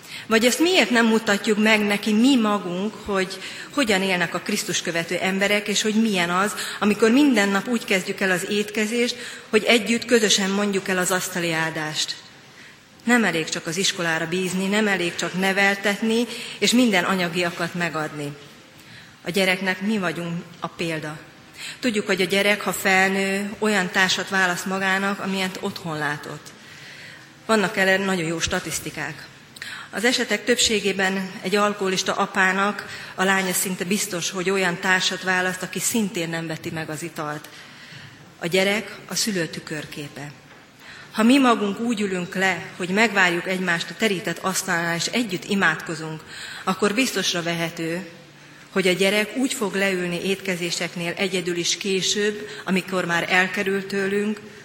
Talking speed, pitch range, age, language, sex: 145 wpm, 170-205 Hz, 30-49, Hungarian, female